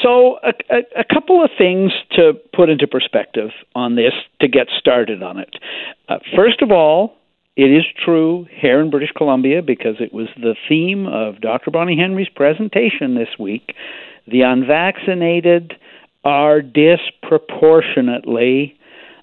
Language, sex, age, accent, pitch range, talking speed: English, male, 60-79, American, 115-165 Hz, 140 wpm